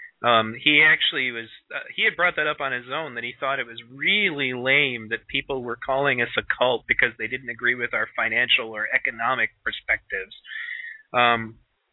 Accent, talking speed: American, 185 wpm